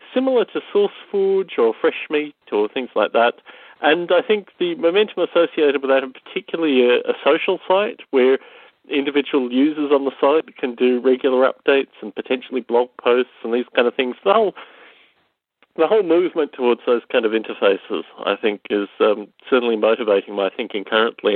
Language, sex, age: English, male, 40-59